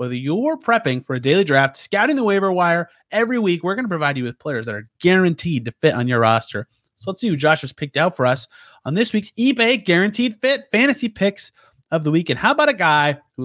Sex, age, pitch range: male, 30-49, 130-195 Hz